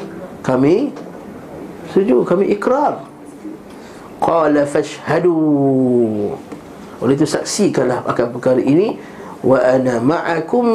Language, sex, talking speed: Malay, male, 80 wpm